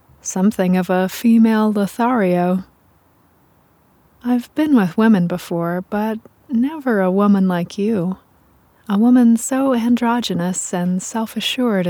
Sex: female